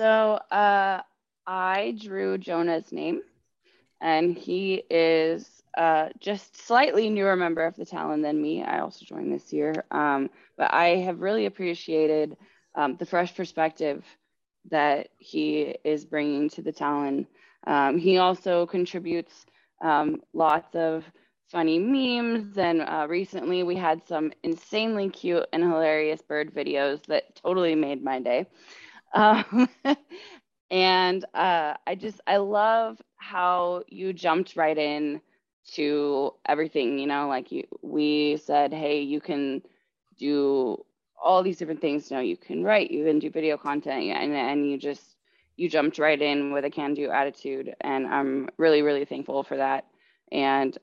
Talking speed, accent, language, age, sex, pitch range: 150 wpm, American, English, 20-39, female, 145-185 Hz